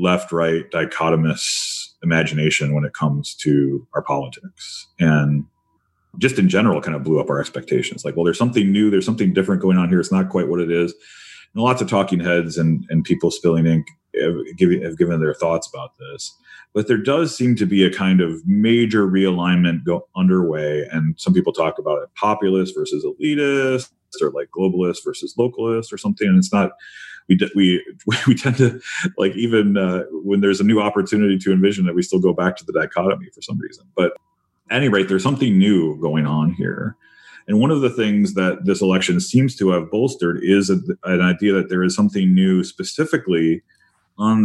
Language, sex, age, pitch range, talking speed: English, male, 30-49, 85-110 Hz, 195 wpm